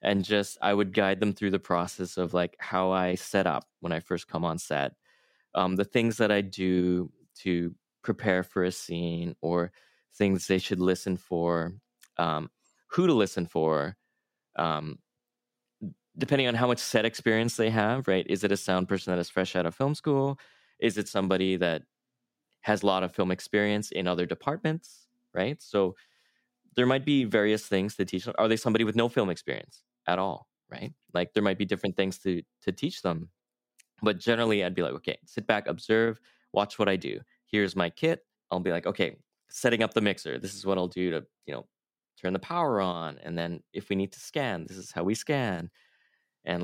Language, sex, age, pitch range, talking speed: English, male, 20-39, 90-110 Hz, 200 wpm